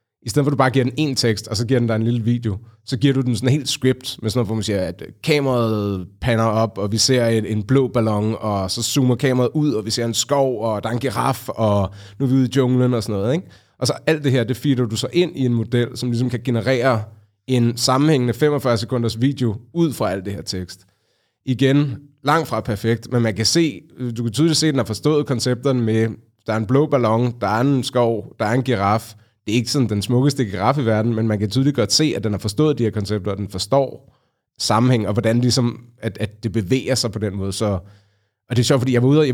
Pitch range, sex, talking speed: 110-130 Hz, male, 265 wpm